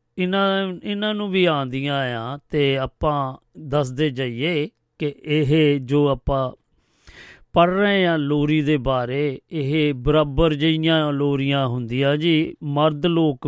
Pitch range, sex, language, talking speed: 130-150 Hz, male, Punjabi, 125 wpm